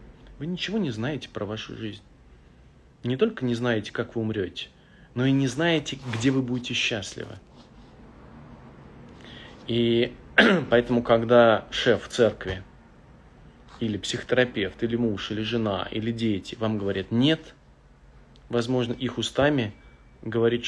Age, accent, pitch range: 30-49, native, 115-135 Hz